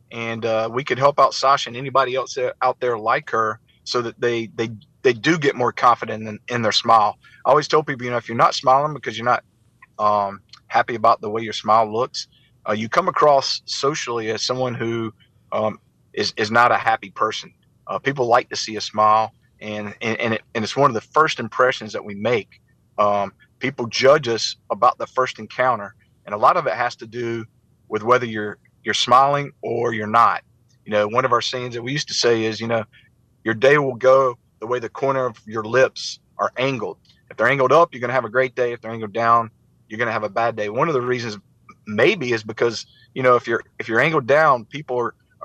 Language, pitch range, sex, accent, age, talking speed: English, 110-125 Hz, male, American, 40-59, 225 wpm